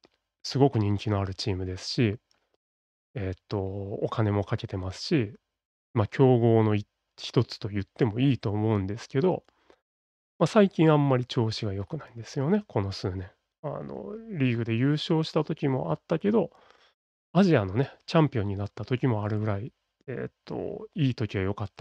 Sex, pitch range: male, 100-135 Hz